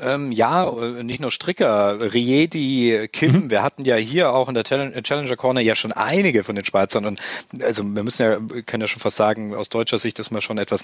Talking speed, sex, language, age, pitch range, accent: 210 wpm, male, German, 40-59, 115-140 Hz, German